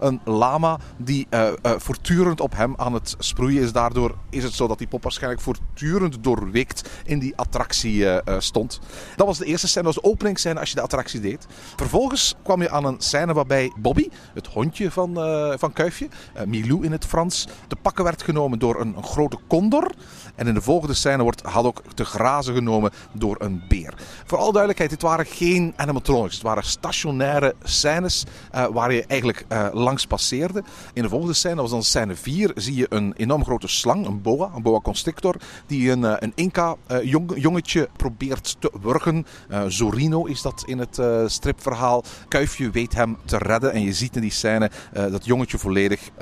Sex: male